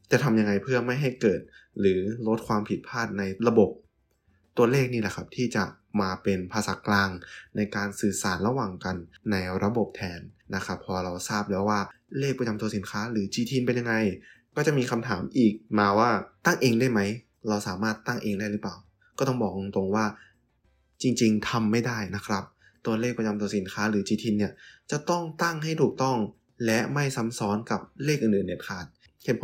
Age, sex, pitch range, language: 20-39, male, 100-120 Hz, English